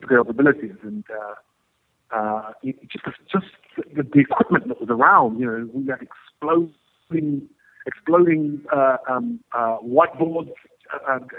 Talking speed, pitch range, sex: 120 wpm, 125-155 Hz, male